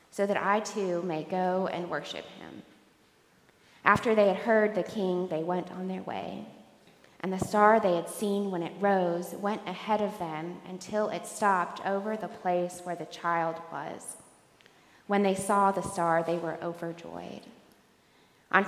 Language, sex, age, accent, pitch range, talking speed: English, female, 20-39, American, 175-205 Hz, 165 wpm